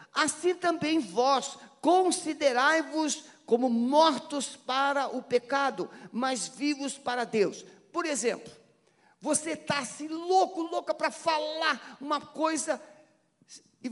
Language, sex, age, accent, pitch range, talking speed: Portuguese, male, 50-69, Brazilian, 185-275 Hz, 110 wpm